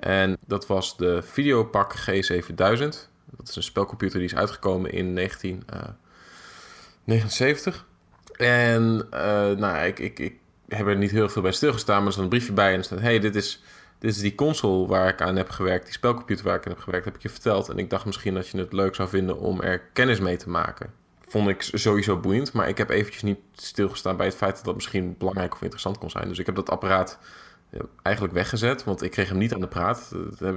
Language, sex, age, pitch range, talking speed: Dutch, male, 20-39, 95-110 Hz, 225 wpm